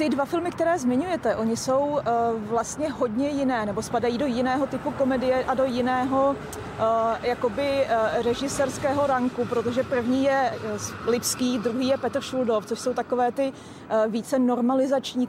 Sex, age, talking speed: female, 30-49, 155 wpm